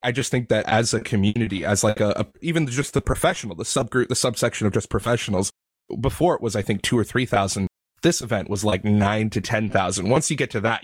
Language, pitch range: English, 100-125 Hz